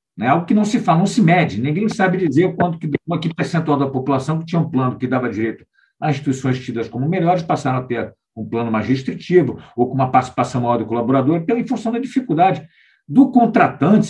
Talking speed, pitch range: 215 wpm, 130-185 Hz